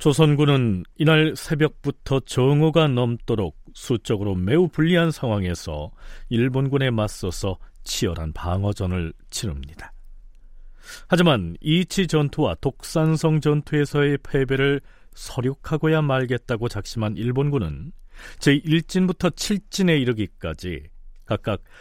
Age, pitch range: 40-59, 100-155 Hz